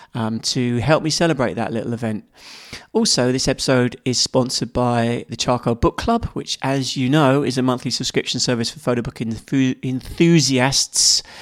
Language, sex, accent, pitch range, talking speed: English, male, British, 115-135 Hz, 165 wpm